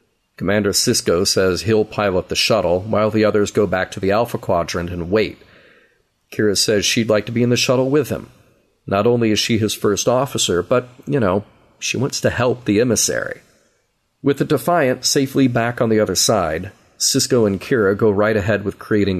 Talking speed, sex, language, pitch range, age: 195 wpm, male, English, 100-130 Hz, 40-59